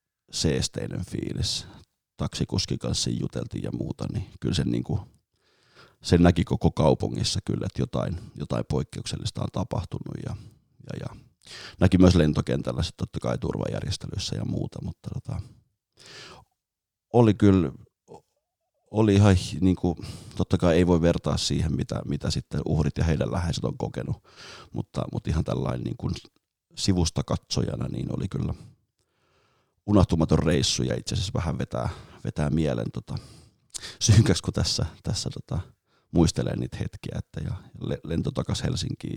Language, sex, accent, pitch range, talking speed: Finnish, male, native, 80-110 Hz, 135 wpm